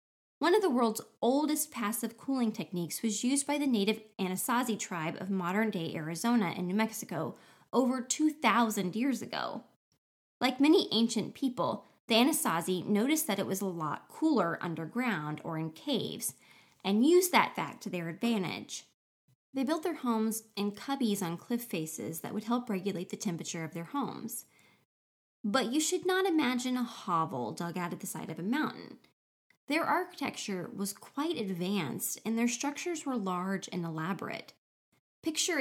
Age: 20-39